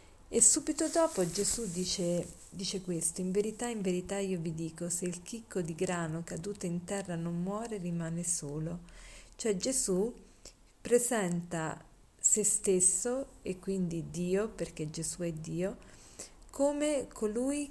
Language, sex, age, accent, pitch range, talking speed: Italian, female, 40-59, native, 170-220 Hz, 135 wpm